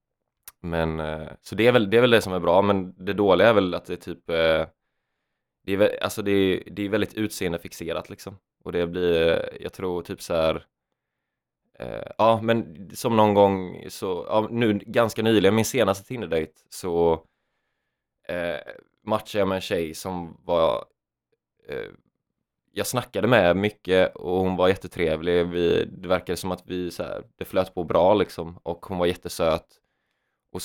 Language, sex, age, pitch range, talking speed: Swedish, male, 20-39, 85-105 Hz, 175 wpm